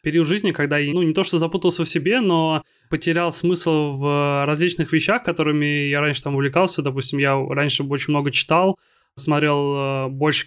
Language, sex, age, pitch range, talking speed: Russian, male, 20-39, 145-165 Hz, 170 wpm